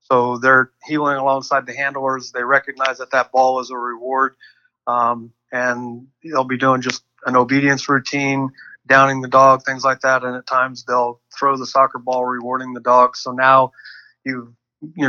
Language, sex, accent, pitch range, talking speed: English, male, American, 120-135 Hz, 175 wpm